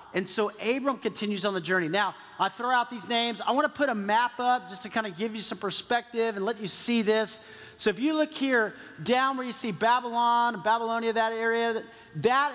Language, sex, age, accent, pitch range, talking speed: English, male, 40-59, American, 195-240 Hz, 225 wpm